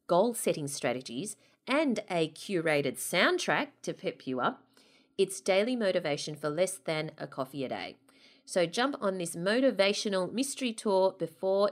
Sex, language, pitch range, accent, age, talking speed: female, English, 160-230 Hz, Australian, 30-49, 145 wpm